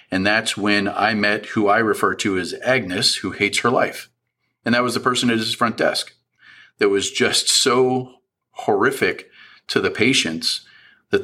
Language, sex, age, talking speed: English, male, 40-59, 175 wpm